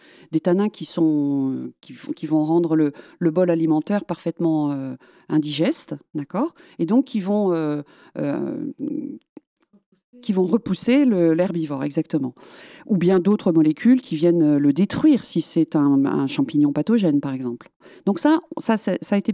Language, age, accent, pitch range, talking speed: French, 40-59, French, 165-255 Hz, 150 wpm